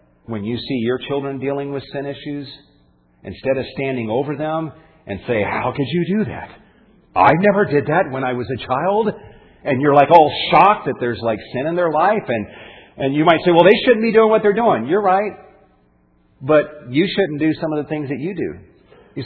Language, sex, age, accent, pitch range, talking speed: English, male, 50-69, American, 90-140 Hz, 215 wpm